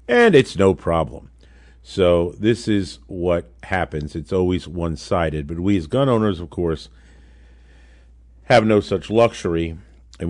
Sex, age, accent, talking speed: male, 50-69, American, 140 wpm